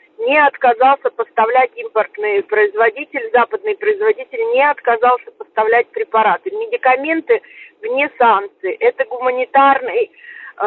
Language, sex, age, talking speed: Russian, female, 30-49, 90 wpm